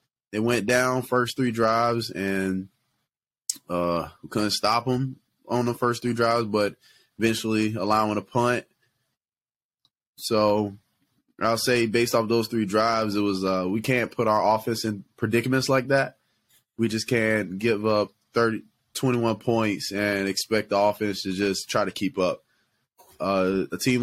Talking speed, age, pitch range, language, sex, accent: 155 wpm, 20-39, 95-115 Hz, English, male, American